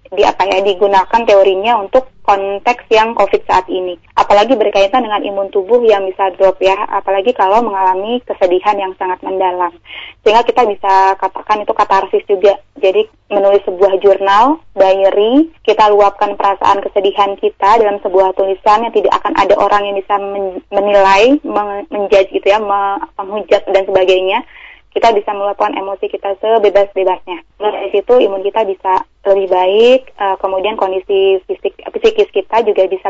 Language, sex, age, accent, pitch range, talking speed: Indonesian, female, 20-39, native, 195-225 Hz, 145 wpm